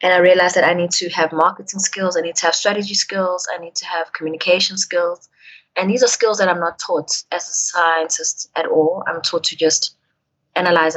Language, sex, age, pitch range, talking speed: English, female, 20-39, 165-190 Hz, 220 wpm